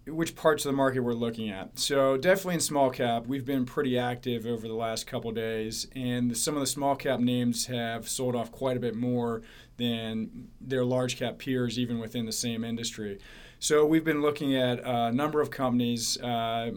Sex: male